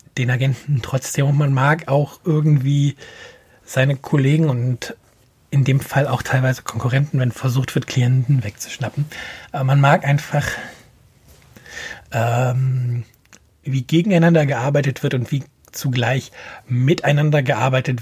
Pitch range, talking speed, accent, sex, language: 115-140 Hz, 120 wpm, German, male, German